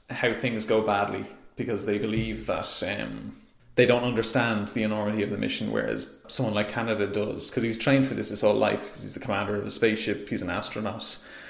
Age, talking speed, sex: 20-39, 210 wpm, male